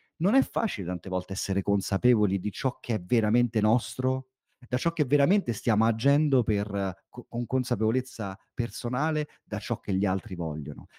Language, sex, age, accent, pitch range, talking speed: Italian, male, 30-49, native, 105-150 Hz, 155 wpm